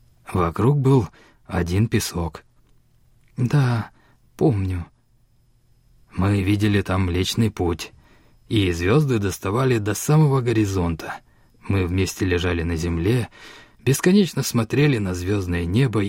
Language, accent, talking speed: Russian, native, 100 wpm